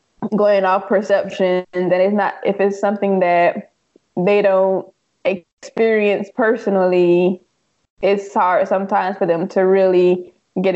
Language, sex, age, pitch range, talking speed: English, female, 20-39, 180-205 Hz, 125 wpm